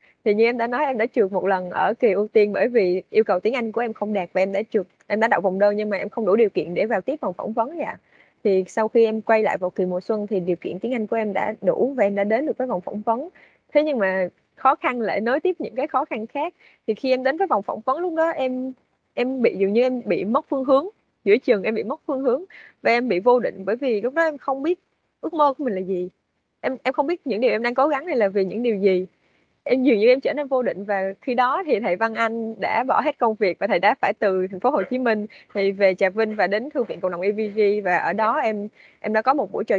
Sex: female